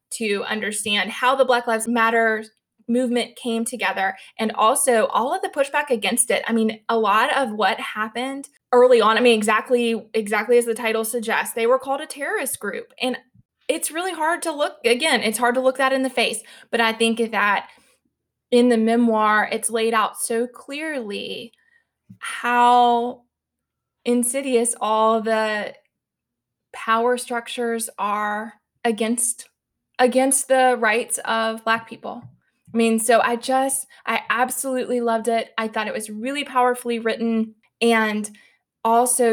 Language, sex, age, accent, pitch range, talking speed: English, female, 20-39, American, 215-245 Hz, 155 wpm